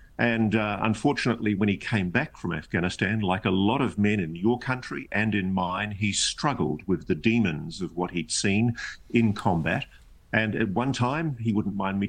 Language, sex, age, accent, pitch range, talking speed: English, male, 50-69, Australian, 100-125 Hz, 195 wpm